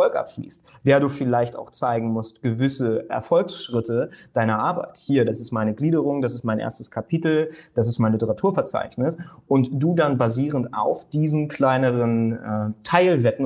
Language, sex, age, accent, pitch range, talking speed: German, male, 30-49, German, 120-160 Hz, 150 wpm